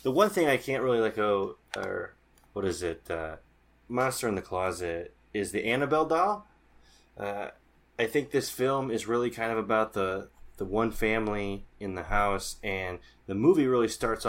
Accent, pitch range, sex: American, 90-115 Hz, male